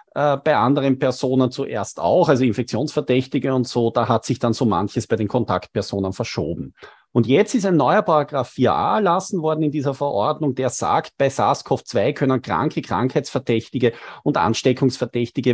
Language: English